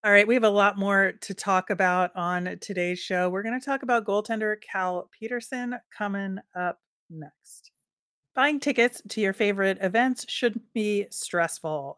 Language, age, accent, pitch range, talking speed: English, 30-49, American, 175-210 Hz, 165 wpm